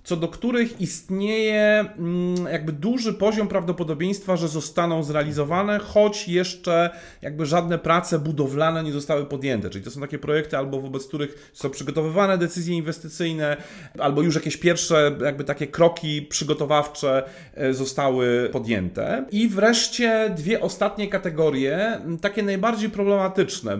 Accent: native